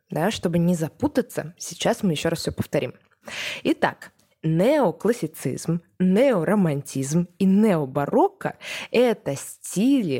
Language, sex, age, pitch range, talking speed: Russian, female, 20-39, 165-240 Hz, 105 wpm